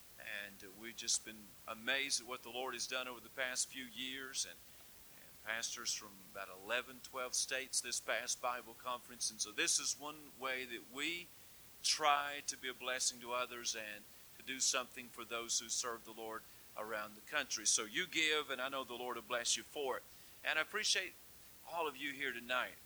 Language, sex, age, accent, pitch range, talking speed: English, male, 50-69, American, 115-130 Hz, 200 wpm